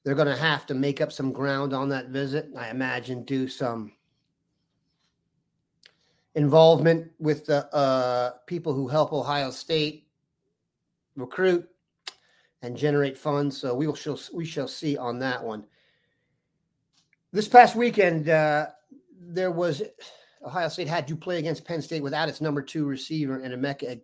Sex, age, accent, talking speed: male, 40-59, American, 150 wpm